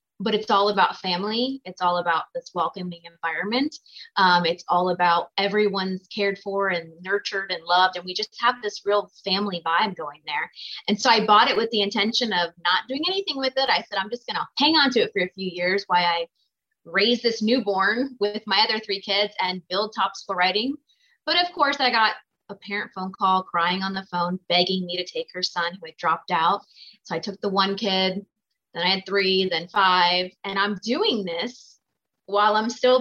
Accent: American